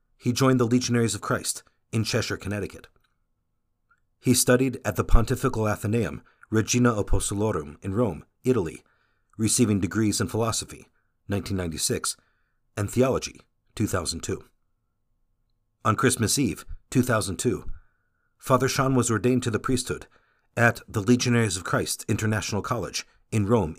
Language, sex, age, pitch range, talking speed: English, male, 50-69, 100-125 Hz, 120 wpm